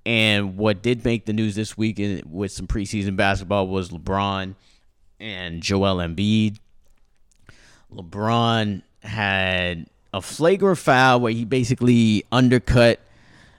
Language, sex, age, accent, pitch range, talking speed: English, male, 30-49, American, 95-115 Hz, 115 wpm